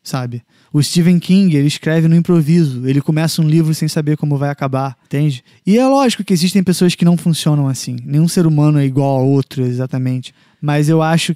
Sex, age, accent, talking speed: male, 20-39, Brazilian, 205 wpm